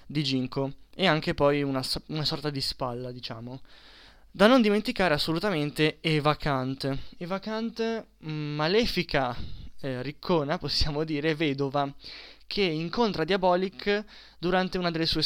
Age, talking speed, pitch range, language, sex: 20-39, 125 wpm, 145-185 Hz, Italian, male